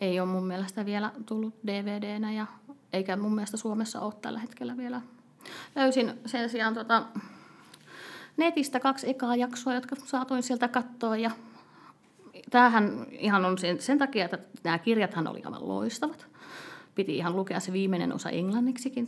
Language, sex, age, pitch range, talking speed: Finnish, female, 30-49, 185-245 Hz, 150 wpm